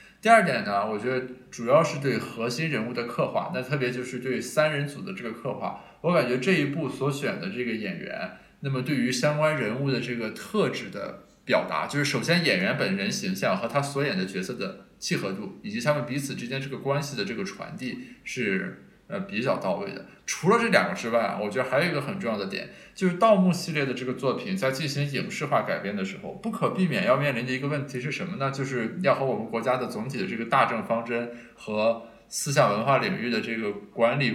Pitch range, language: 125-185 Hz, Chinese